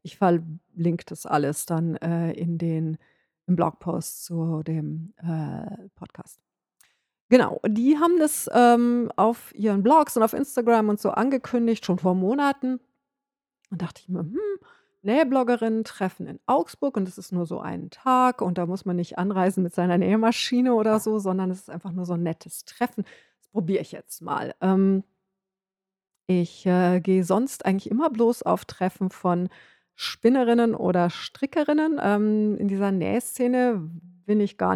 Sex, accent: female, German